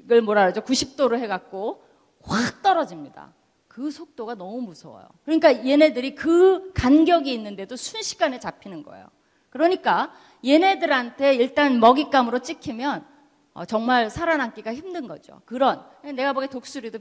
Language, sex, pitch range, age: Korean, female, 205-290 Hz, 30-49